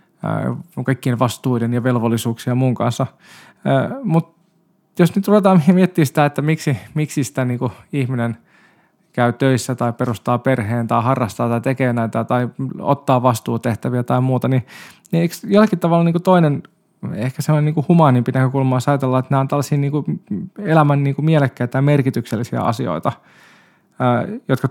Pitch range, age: 130-165 Hz, 20-39